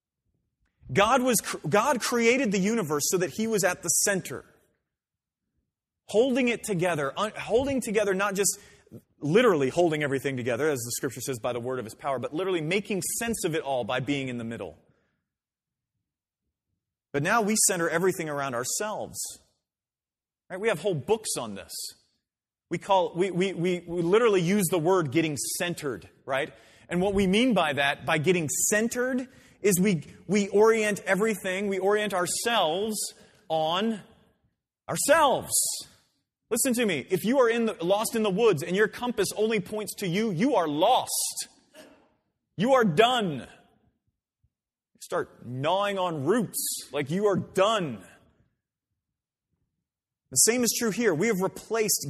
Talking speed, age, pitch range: 155 wpm, 30-49, 150-210 Hz